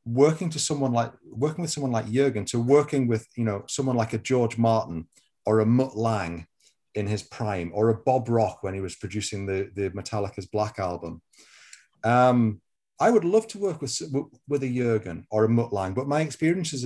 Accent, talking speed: British, 200 wpm